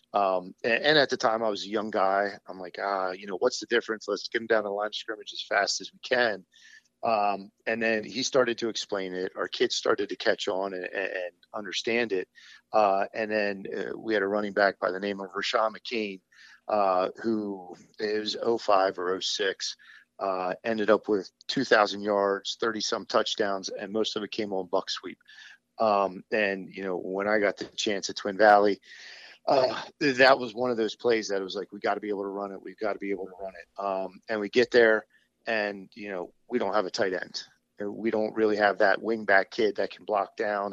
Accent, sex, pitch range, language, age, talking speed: American, male, 100-115 Hz, English, 40-59, 225 wpm